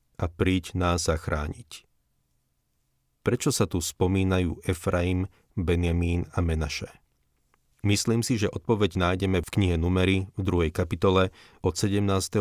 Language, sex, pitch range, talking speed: Slovak, male, 85-100 Hz, 120 wpm